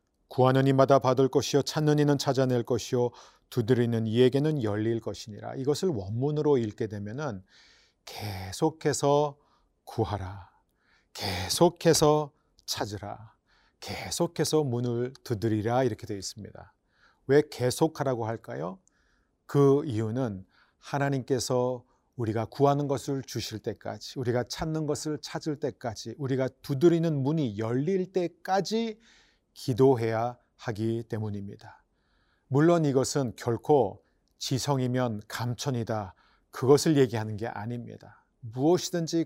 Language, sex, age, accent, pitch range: Korean, male, 40-59, native, 115-150 Hz